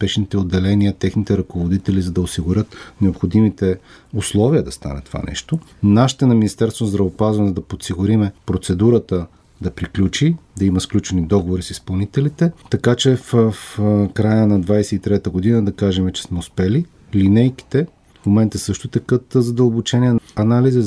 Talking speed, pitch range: 140 wpm, 95-120 Hz